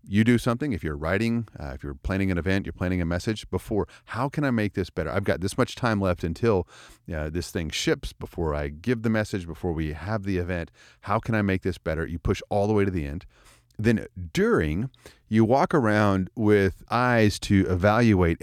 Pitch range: 85-105 Hz